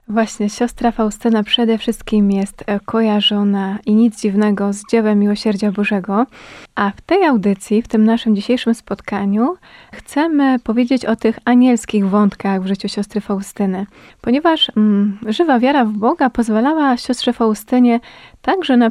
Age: 20-39